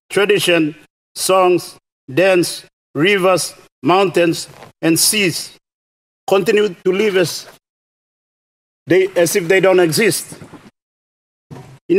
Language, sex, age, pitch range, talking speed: Indonesian, male, 50-69, 150-190 Hz, 90 wpm